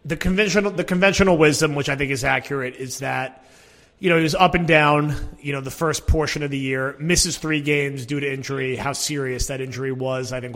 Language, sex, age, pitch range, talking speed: English, male, 30-49, 130-155 Hz, 225 wpm